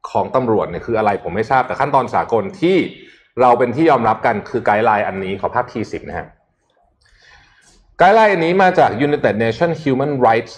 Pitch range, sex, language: 105-145 Hz, male, Thai